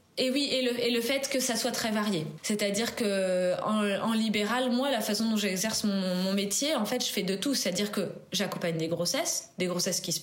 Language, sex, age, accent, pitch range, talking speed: French, female, 20-39, French, 180-220 Hz, 235 wpm